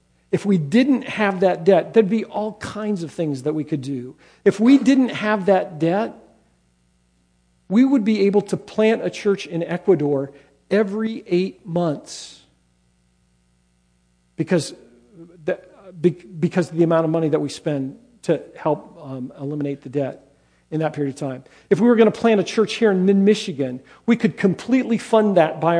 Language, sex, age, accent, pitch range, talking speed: English, male, 50-69, American, 145-205 Hz, 170 wpm